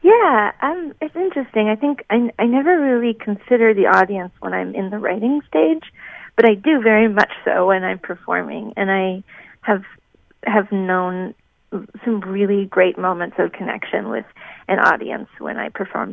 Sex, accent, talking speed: female, American, 165 wpm